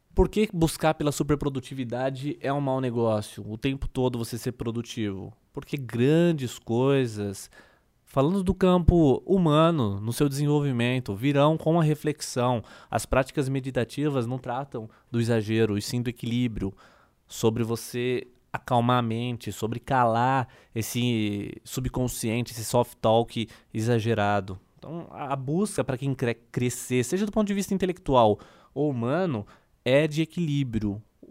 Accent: Brazilian